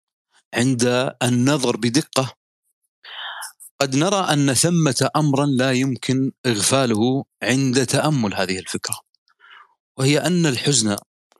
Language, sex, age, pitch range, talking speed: Arabic, male, 40-59, 110-140 Hz, 95 wpm